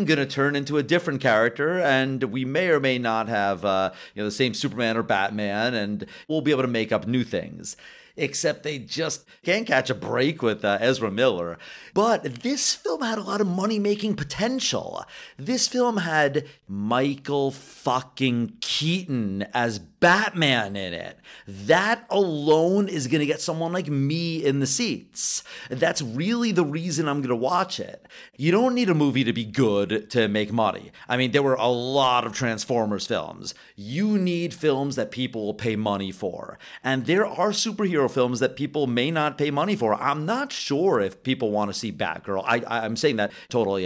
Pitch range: 110-165 Hz